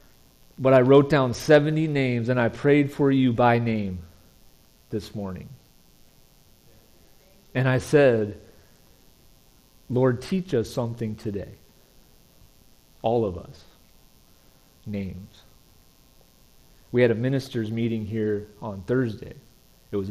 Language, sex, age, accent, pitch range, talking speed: English, male, 40-59, American, 100-125 Hz, 110 wpm